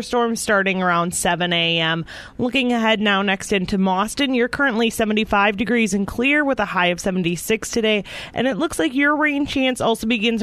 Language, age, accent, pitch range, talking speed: English, 30-49, American, 195-245 Hz, 185 wpm